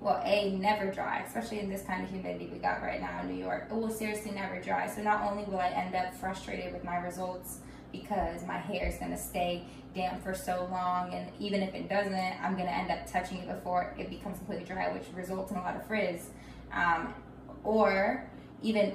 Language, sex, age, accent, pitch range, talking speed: English, female, 10-29, American, 185-210 Hz, 225 wpm